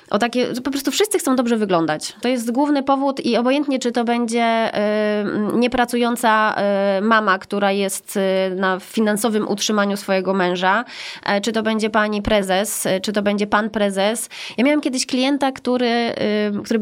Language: Polish